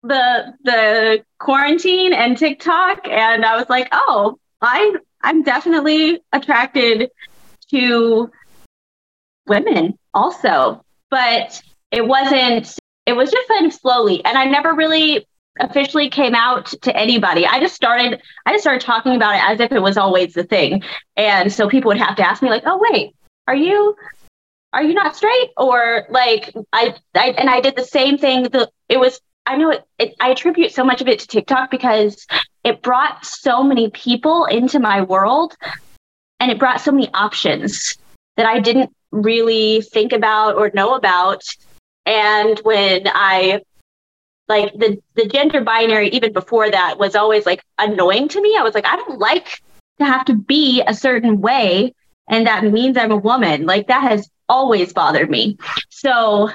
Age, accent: 20-39, American